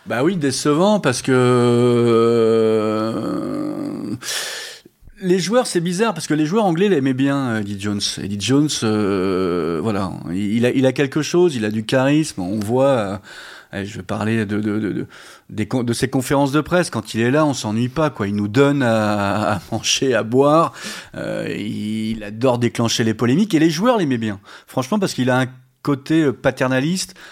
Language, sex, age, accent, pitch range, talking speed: French, male, 30-49, French, 115-155 Hz, 180 wpm